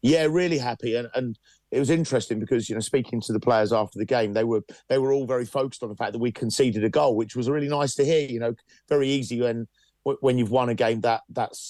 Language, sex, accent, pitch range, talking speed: English, male, British, 110-130 Hz, 260 wpm